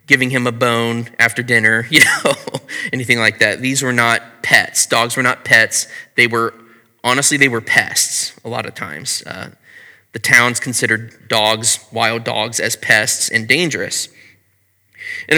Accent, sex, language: American, male, English